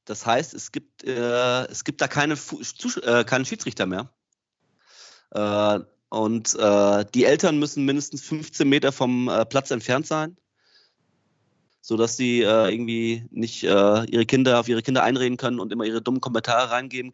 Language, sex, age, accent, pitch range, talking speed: German, male, 20-39, German, 115-140 Hz, 160 wpm